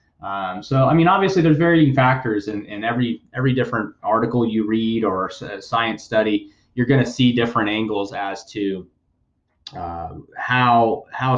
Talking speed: 160 wpm